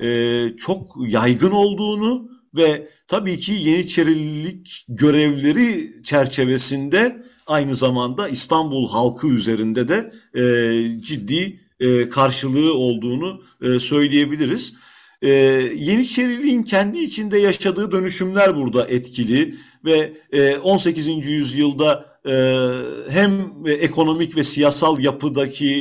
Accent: native